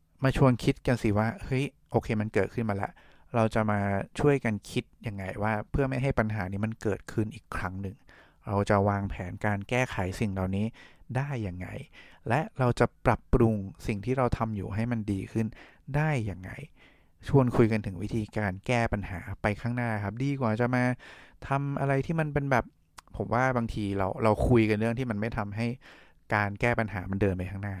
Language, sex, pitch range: English, male, 100-120 Hz